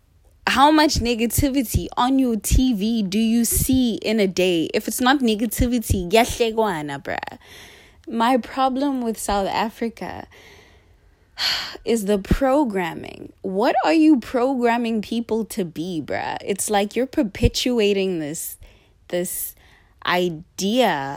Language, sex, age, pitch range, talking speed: English, female, 20-39, 170-240 Hz, 115 wpm